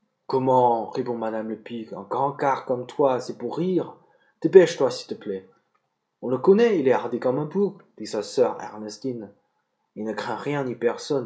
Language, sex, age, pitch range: Chinese, male, 20-39, 120-155 Hz